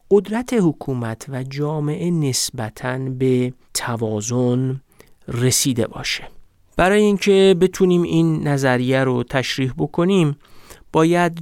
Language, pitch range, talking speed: Persian, 125-155 Hz, 95 wpm